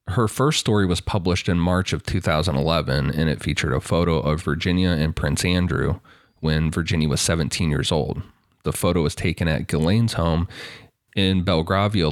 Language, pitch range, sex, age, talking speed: English, 80-100 Hz, male, 30-49, 170 wpm